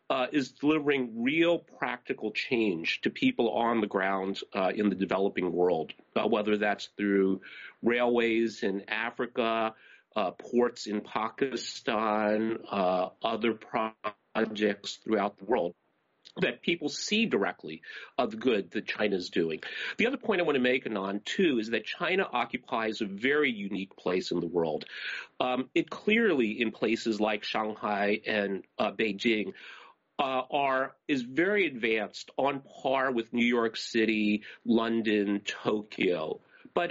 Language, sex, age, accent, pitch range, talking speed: English, male, 40-59, American, 105-145 Hz, 140 wpm